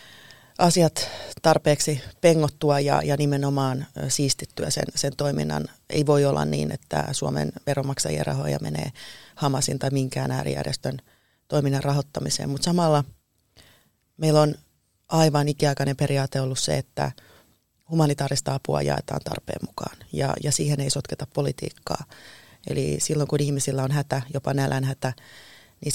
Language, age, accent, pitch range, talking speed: Finnish, 30-49, native, 130-150 Hz, 130 wpm